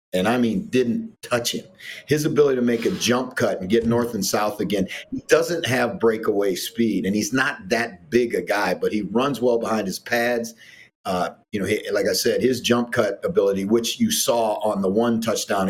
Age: 40-59